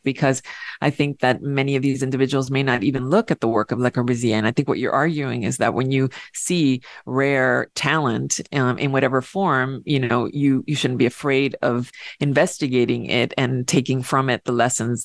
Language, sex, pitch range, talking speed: English, female, 125-145 Hz, 205 wpm